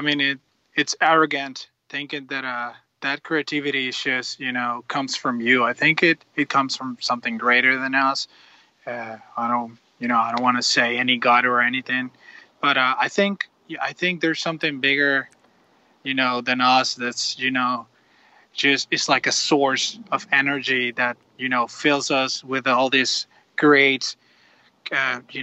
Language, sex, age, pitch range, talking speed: English, male, 20-39, 125-145 Hz, 175 wpm